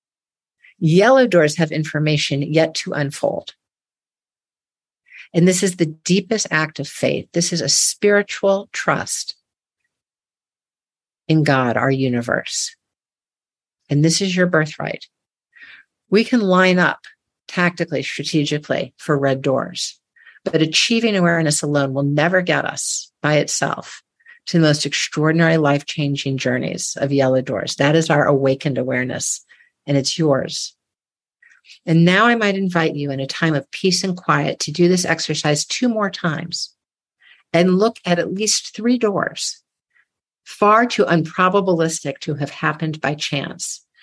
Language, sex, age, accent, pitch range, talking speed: English, female, 50-69, American, 145-185 Hz, 135 wpm